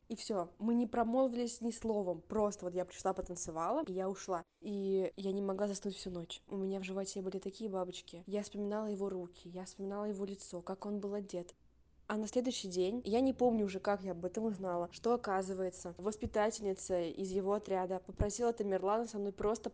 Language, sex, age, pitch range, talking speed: Russian, female, 20-39, 185-210 Hz, 200 wpm